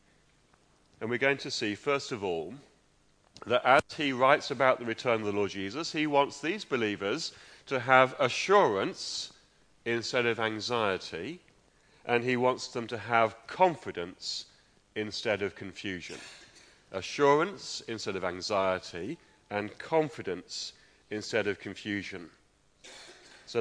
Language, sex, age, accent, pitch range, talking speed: English, male, 40-59, British, 100-130 Hz, 125 wpm